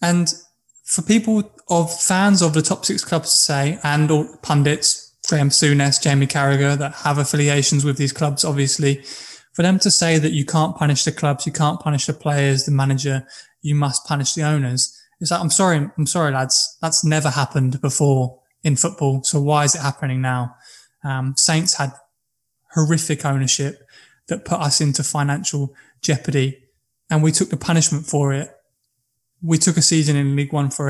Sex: male